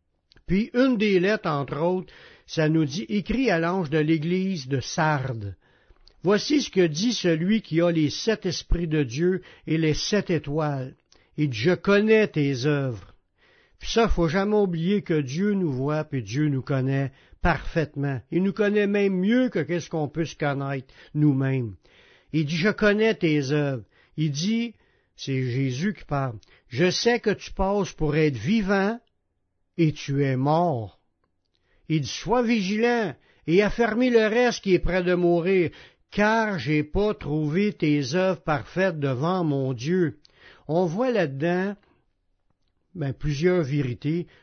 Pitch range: 145-200 Hz